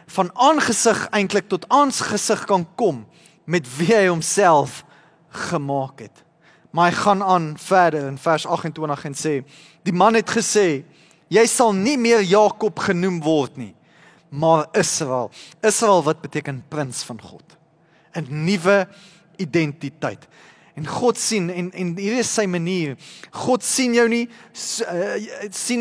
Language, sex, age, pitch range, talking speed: English, male, 30-49, 155-195 Hz, 140 wpm